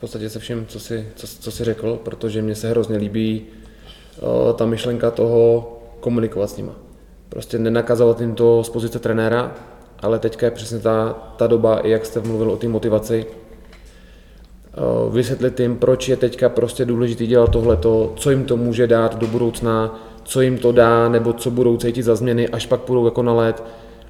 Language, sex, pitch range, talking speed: Czech, male, 110-120 Hz, 185 wpm